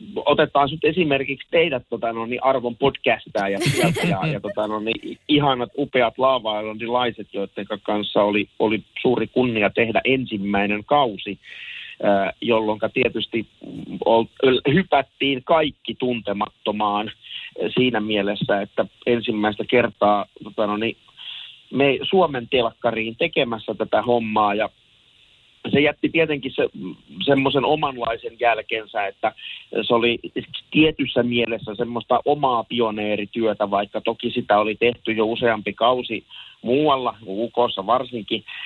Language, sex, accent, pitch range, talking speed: Finnish, male, native, 105-130 Hz, 110 wpm